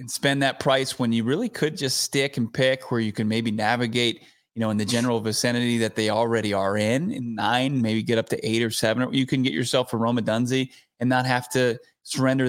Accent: American